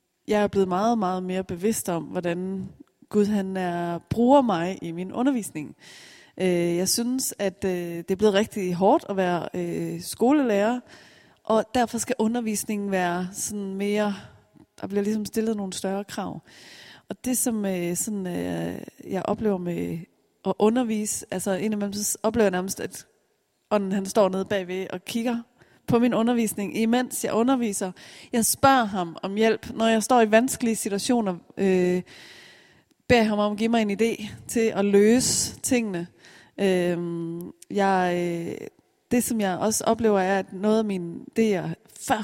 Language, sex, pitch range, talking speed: Danish, female, 185-225 Hz, 155 wpm